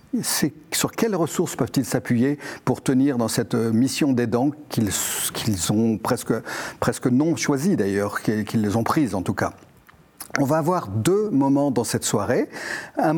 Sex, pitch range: male, 115-145 Hz